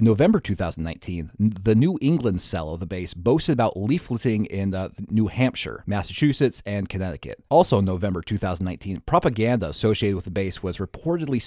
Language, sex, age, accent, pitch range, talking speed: English, male, 30-49, American, 95-130 Hz, 150 wpm